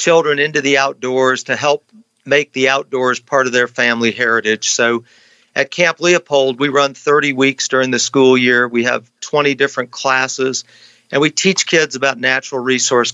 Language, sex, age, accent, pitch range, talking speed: English, male, 50-69, American, 125-145 Hz, 175 wpm